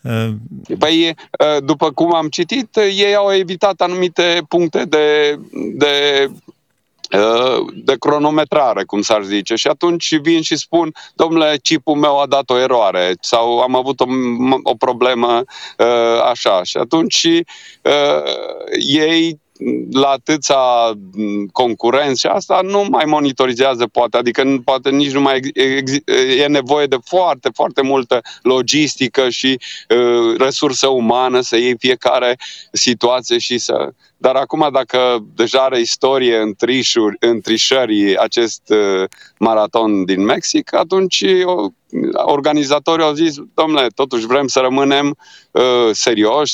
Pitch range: 115-155 Hz